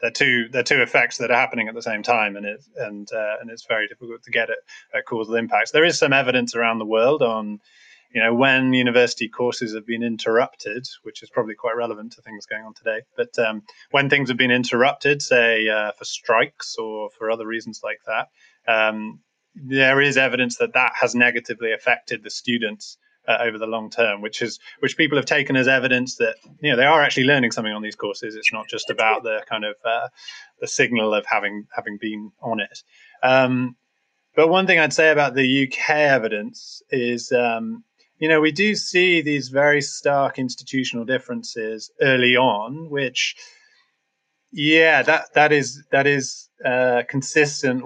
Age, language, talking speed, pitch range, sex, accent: 20-39, English, 190 wpm, 115-145 Hz, male, British